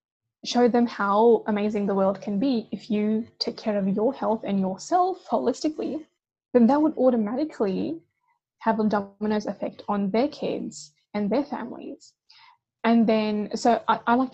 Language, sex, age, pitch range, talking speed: English, female, 10-29, 210-255 Hz, 160 wpm